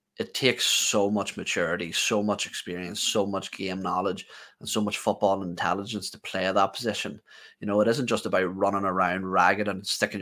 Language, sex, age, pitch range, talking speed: English, male, 20-39, 95-105 Hz, 190 wpm